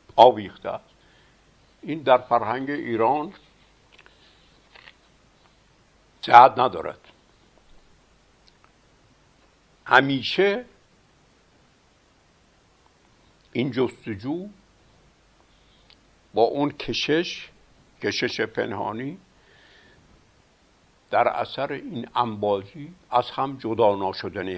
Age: 60-79